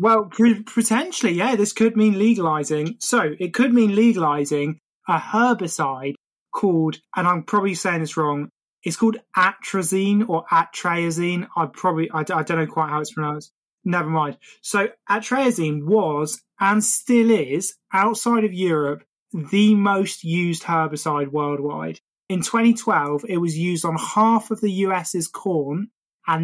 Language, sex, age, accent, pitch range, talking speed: English, male, 20-39, British, 160-210 Hz, 145 wpm